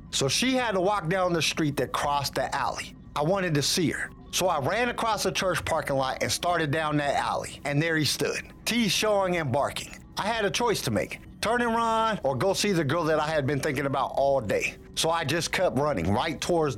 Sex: male